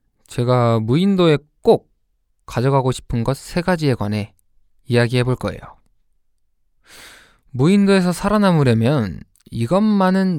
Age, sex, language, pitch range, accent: 20-39, male, Korean, 105-150 Hz, native